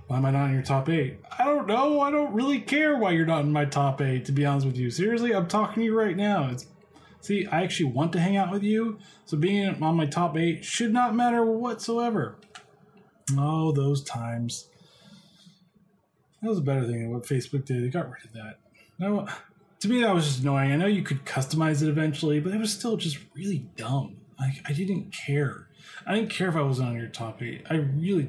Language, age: English, 20-39